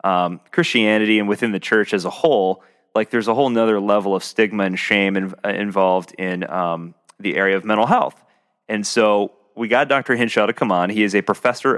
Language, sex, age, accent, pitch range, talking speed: English, male, 30-49, American, 90-110 Hz, 210 wpm